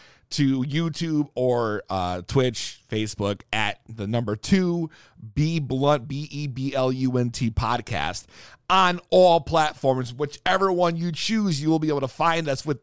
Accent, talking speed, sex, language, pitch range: American, 135 wpm, male, English, 125-200 Hz